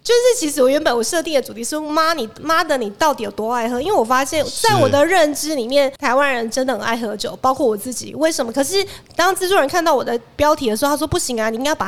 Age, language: 20-39, Chinese